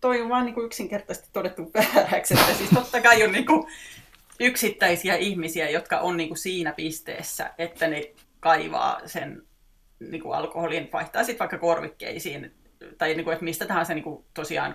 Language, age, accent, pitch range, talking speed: Finnish, 30-49, native, 165-210 Hz, 175 wpm